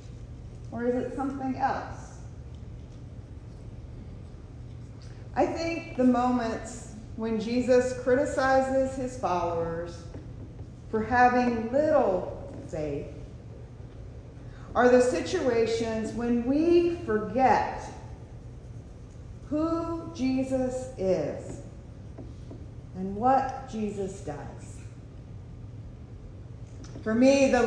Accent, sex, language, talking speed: American, female, English, 75 wpm